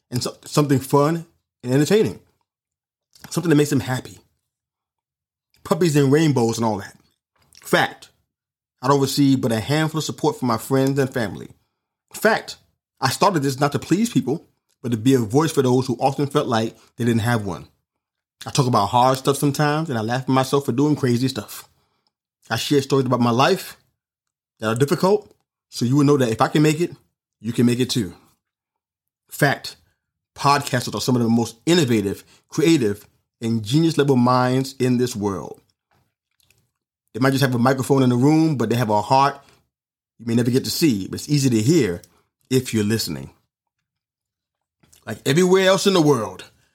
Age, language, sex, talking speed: 30-49, English, male, 180 wpm